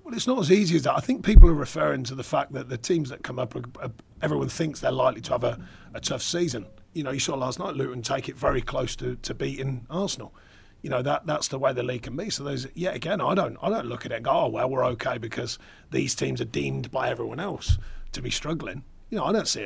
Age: 40-59